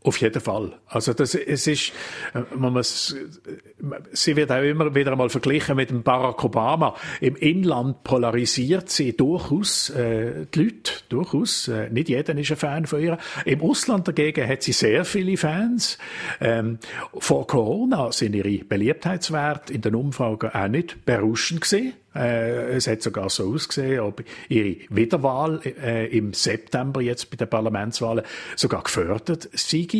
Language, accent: German, Austrian